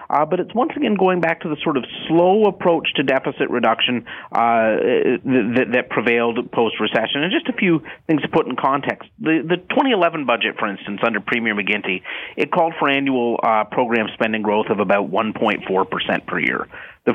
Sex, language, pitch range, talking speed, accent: male, English, 120-165 Hz, 185 wpm, American